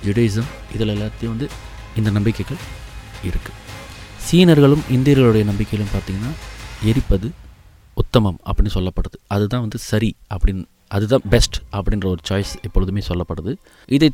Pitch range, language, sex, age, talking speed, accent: 90-110 Hz, Tamil, male, 30-49, 120 wpm, native